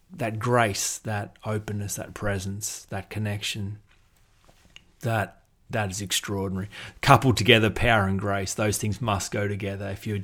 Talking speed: 135 wpm